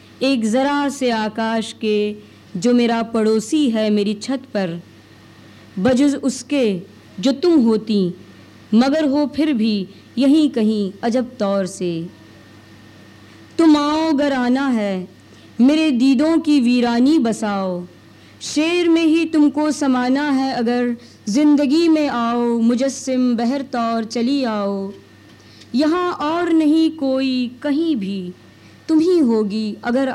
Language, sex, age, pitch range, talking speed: Hindi, female, 20-39, 200-275 Hz, 120 wpm